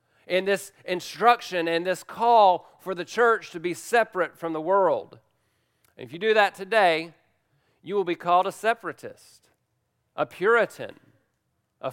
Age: 40-59